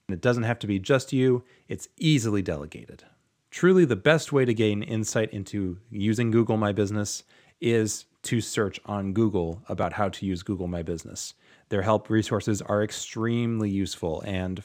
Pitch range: 95-115 Hz